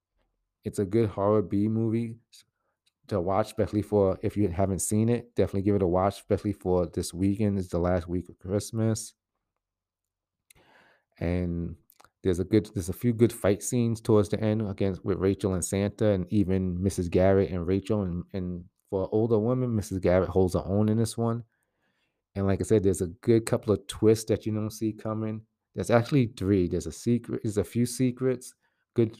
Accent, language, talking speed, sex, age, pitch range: American, English, 185 wpm, male, 30-49, 95-110 Hz